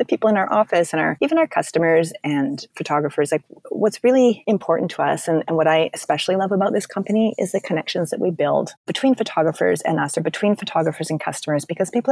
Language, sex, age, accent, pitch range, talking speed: English, female, 30-49, American, 155-205 Hz, 220 wpm